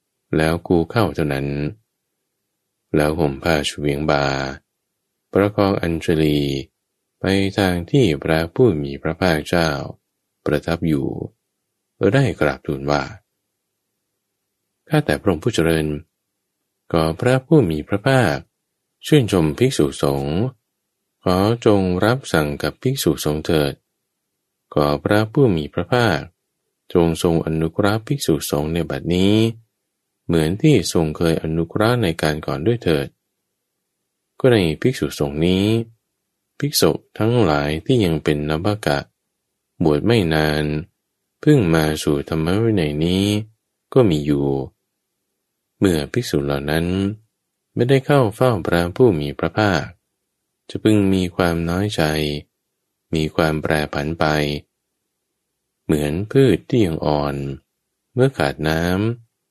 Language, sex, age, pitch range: English, male, 20-39, 75-105 Hz